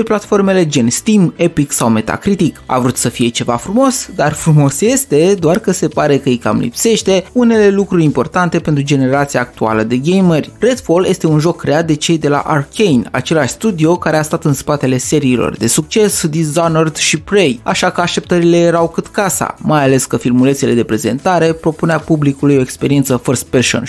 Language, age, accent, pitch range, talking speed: Romanian, 20-39, native, 140-185 Hz, 180 wpm